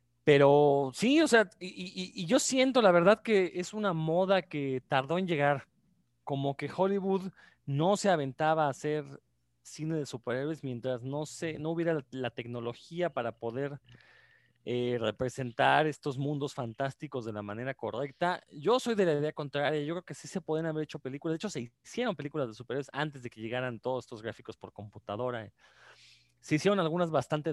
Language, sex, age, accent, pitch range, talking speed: Spanish, male, 30-49, Mexican, 135-180 Hz, 185 wpm